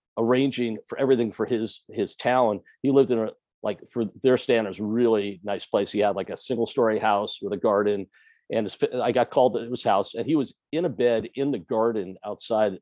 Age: 50-69